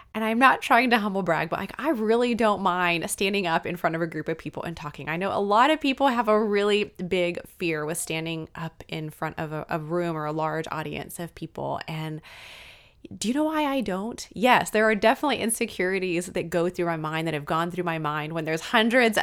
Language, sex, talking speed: English, female, 235 wpm